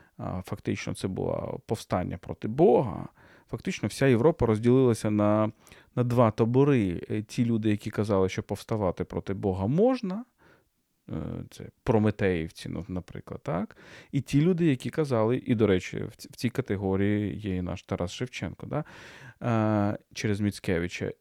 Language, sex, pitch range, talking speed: Ukrainian, male, 105-130 Hz, 135 wpm